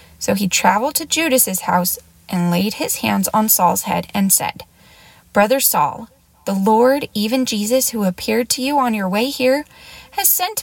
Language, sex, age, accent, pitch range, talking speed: English, female, 20-39, American, 190-275 Hz, 175 wpm